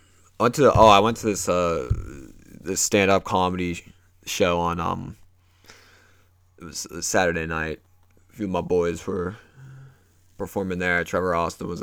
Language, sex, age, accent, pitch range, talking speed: English, male, 20-39, American, 90-100 Hz, 160 wpm